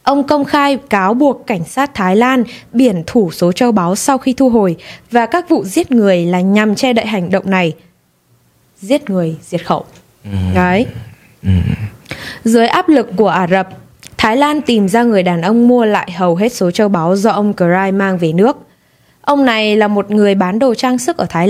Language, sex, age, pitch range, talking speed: Vietnamese, female, 20-39, 185-255 Hz, 200 wpm